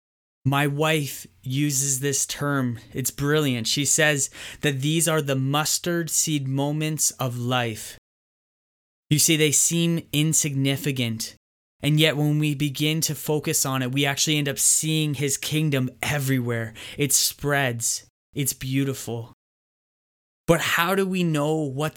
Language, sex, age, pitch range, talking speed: English, male, 20-39, 125-155 Hz, 135 wpm